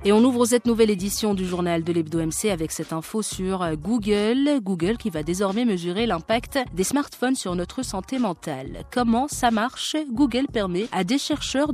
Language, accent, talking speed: French, French, 180 wpm